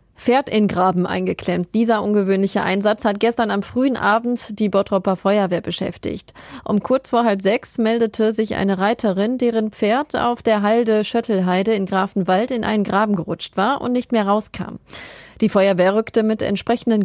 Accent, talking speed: German, 165 wpm